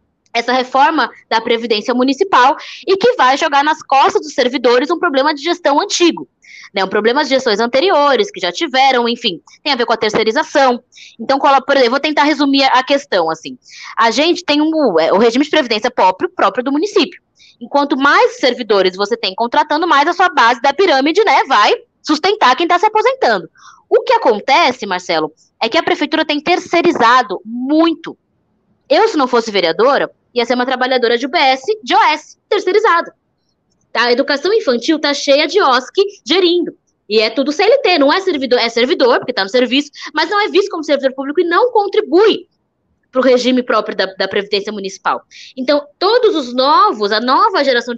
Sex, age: female, 20-39